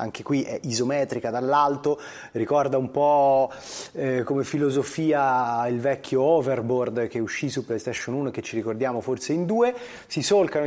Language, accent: Italian, native